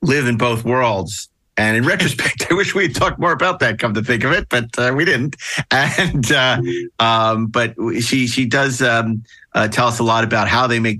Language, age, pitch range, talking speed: English, 50-69, 110-130 Hz, 225 wpm